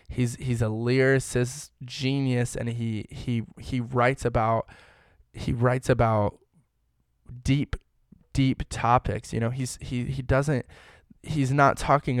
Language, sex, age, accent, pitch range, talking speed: English, male, 10-29, American, 115-130 Hz, 130 wpm